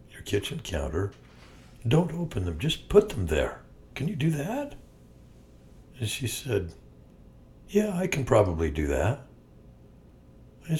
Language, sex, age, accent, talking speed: English, male, 60-79, American, 130 wpm